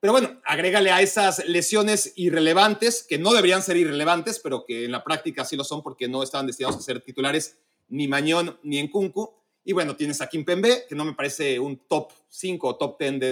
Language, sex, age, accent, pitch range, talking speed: Spanish, male, 40-59, Mexican, 140-195 Hz, 215 wpm